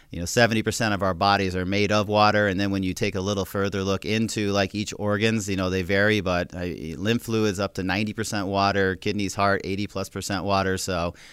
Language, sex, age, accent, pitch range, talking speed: English, male, 30-49, American, 95-110 Hz, 230 wpm